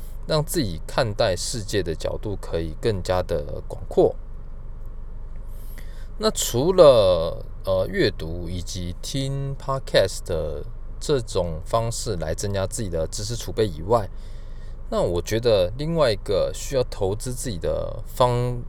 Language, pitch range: Chinese, 90-120 Hz